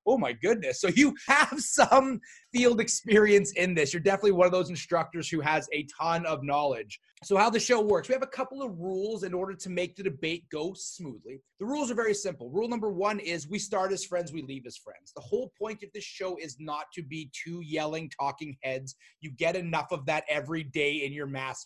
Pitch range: 155-200 Hz